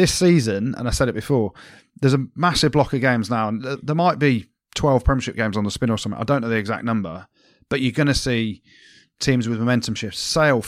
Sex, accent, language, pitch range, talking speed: male, British, English, 110-135 Hz, 230 wpm